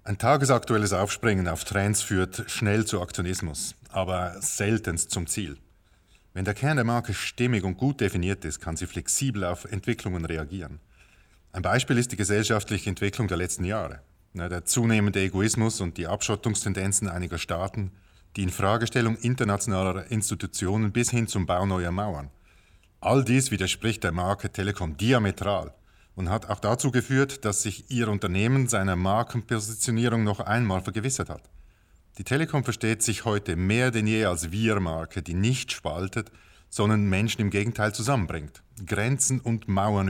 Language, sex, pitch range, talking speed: German, male, 90-115 Hz, 150 wpm